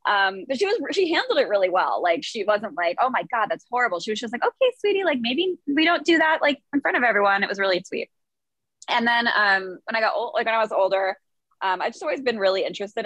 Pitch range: 170-235 Hz